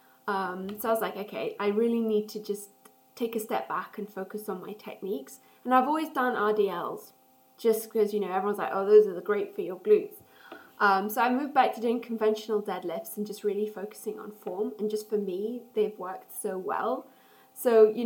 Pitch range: 210-250 Hz